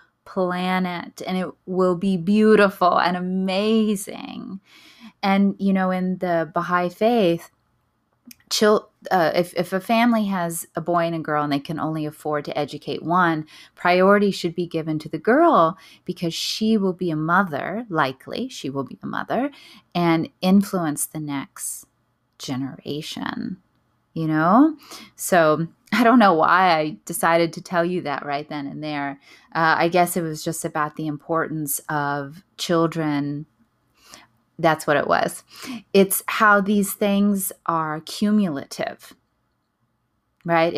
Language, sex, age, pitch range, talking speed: English, female, 20-39, 155-195 Hz, 145 wpm